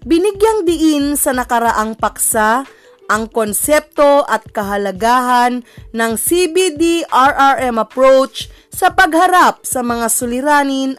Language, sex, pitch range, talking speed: Filipino, female, 225-310 Hz, 95 wpm